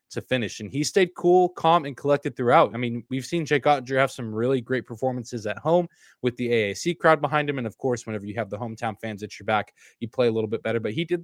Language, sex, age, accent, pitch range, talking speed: English, male, 20-39, American, 115-145 Hz, 265 wpm